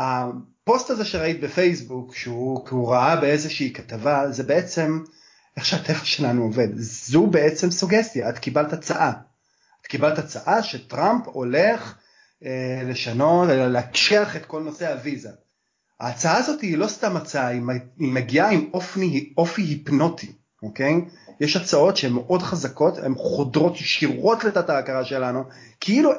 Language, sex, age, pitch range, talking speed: Hebrew, male, 30-49, 130-170 Hz, 135 wpm